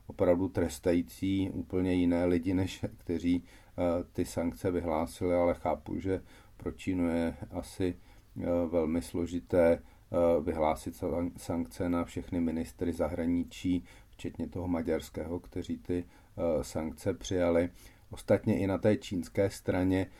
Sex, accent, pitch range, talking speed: male, native, 85-95 Hz, 115 wpm